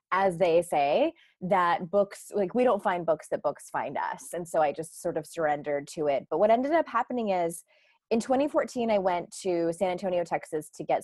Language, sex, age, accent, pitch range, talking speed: English, female, 20-39, American, 160-210 Hz, 210 wpm